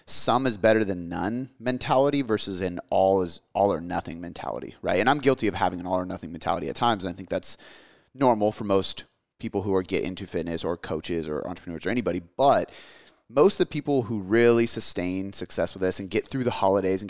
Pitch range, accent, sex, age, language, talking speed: 95-120 Hz, American, male, 30-49, English, 220 wpm